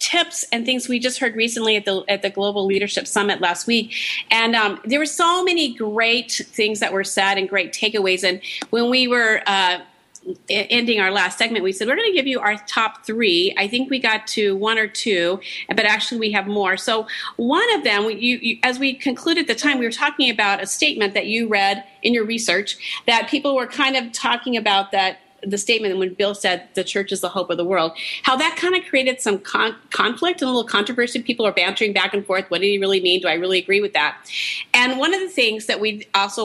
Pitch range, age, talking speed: 195-255 Hz, 40-59, 235 wpm